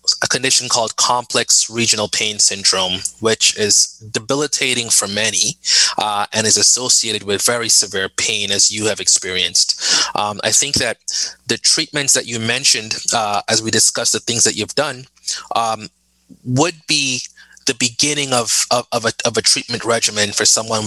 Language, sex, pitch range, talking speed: English, male, 105-125 Hz, 155 wpm